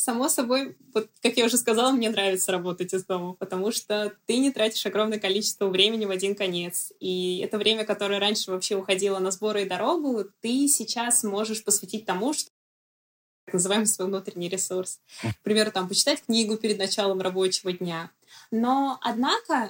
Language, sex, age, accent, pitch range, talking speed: Russian, female, 20-39, native, 205-265 Hz, 165 wpm